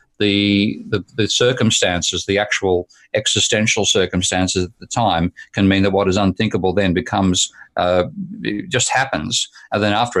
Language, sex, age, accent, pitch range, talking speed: English, male, 50-69, Australian, 90-105 Hz, 145 wpm